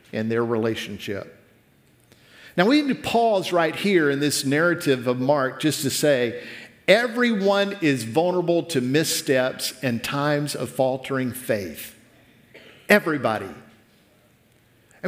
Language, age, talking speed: English, 50-69, 120 wpm